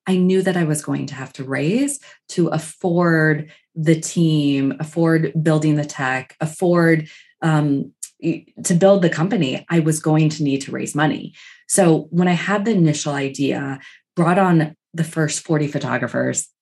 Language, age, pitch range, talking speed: English, 20-39, 150-190 Hz, 165 wpm